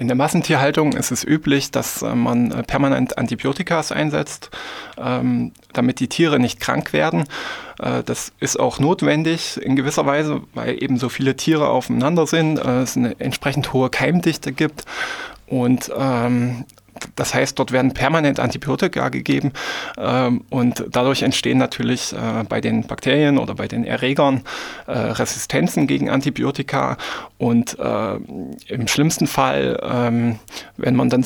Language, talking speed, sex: German, 135 wpm, male